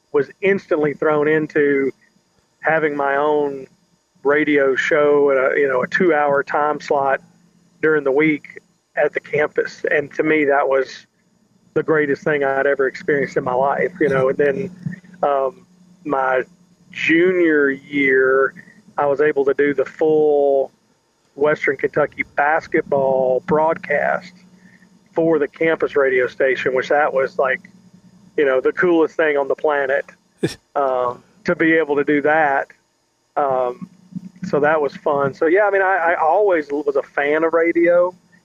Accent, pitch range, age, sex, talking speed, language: American, 140-185 Hz, 40-59, male, 155 wpm, English